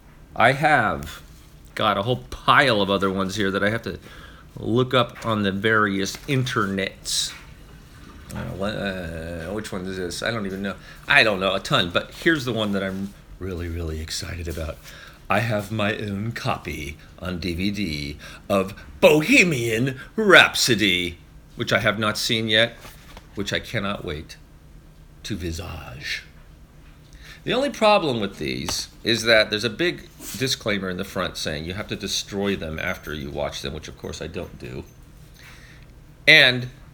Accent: American